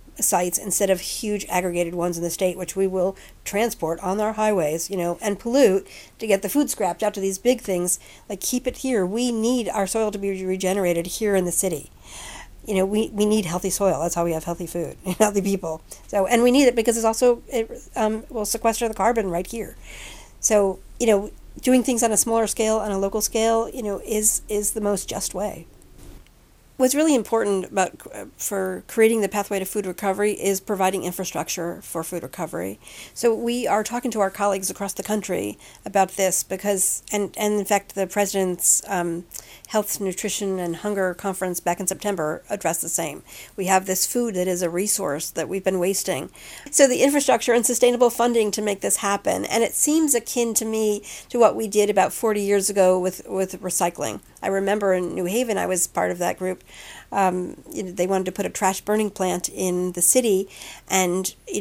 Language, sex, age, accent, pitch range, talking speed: English, female, 50-69, American, 180-215 Hz, 205 wpm